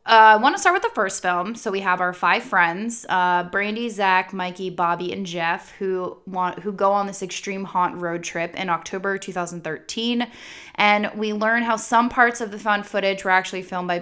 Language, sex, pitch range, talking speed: English, female, 180-220 Hz, 210 wpm